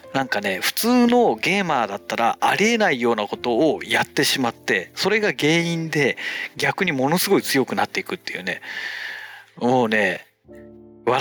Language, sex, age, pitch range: Japanese, male, 40-59, 130-210 Hz